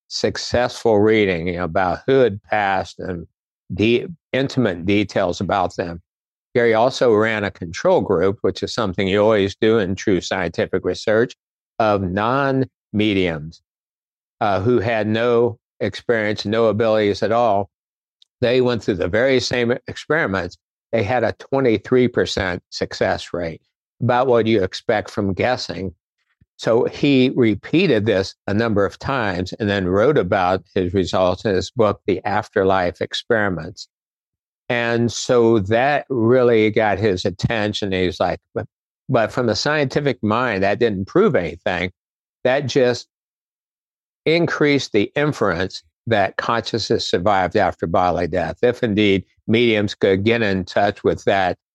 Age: 60-79